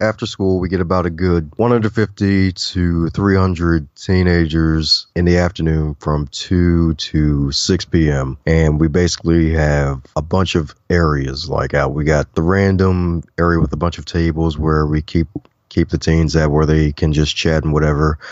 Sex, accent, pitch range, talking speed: male, American, 80-90 Hz, 175 wpm